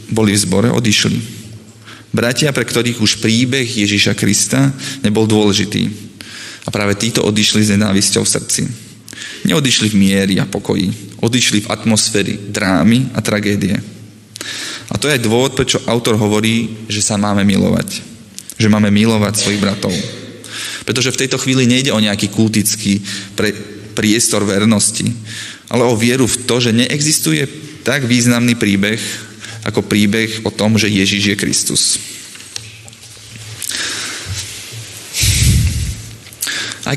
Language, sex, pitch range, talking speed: Slovak, male, 105-120 Hz, 125 wpm